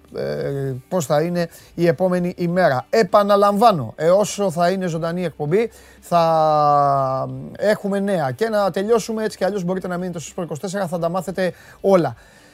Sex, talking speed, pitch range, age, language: male, 150 wpm, 155-205 Hz, 30-49, Greek